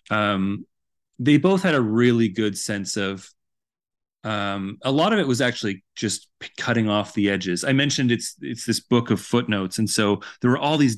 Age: 30-49